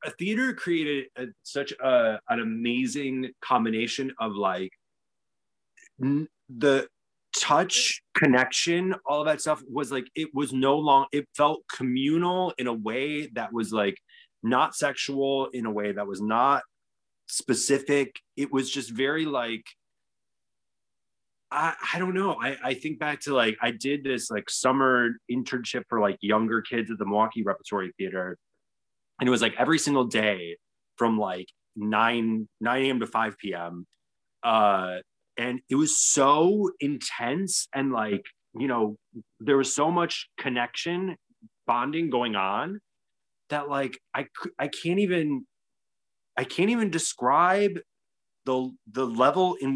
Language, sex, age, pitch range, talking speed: English, male, 30-49, 120-170 Hz, 140 wpm